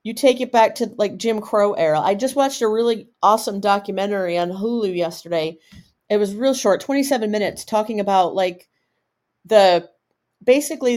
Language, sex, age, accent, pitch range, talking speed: English, female, 40-59, American, 195-245 Hz, 165 wpm